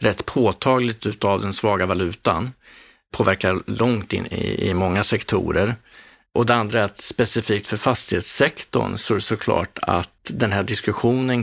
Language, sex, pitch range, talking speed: Swedish, male, 100-120 Hz, 145 wpm